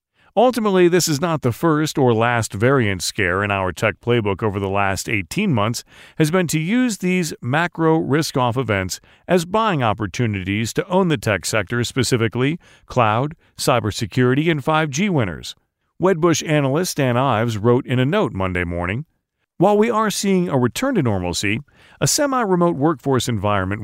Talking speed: 160 wpm